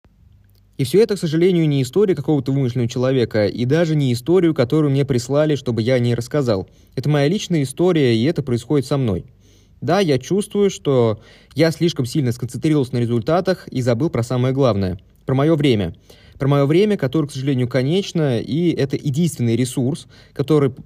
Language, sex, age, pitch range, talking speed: Russian, male, 20-39, 120-155 Hz, 175 wpm